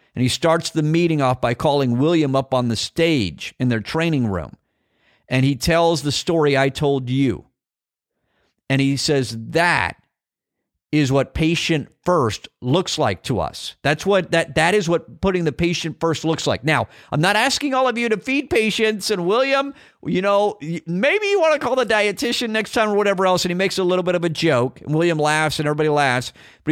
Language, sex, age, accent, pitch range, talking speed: English, male, 50-69, American, 140-185 Hz, 205 wpm